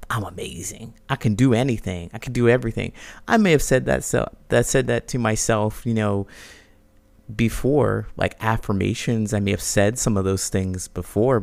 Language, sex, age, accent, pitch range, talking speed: English, male, 30-49, American, 105-125 Hz, 185 wpm